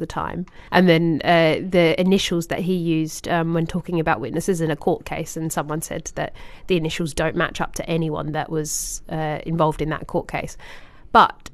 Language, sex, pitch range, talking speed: English, female, 155-175 Hz, 205 wpm